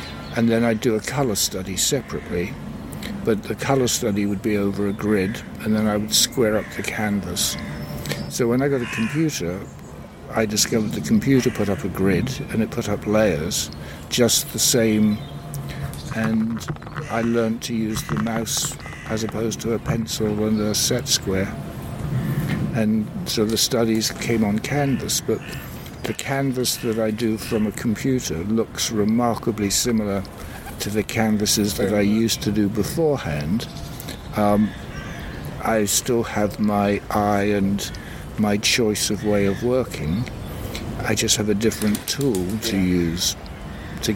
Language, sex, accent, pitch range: English, male, British, 100-115 Hz